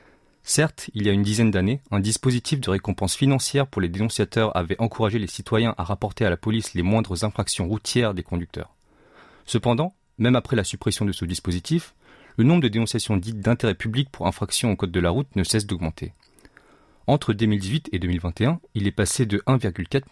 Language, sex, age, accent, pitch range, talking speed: French, male, 40-59, French, 95-120 Hz, 190 wpm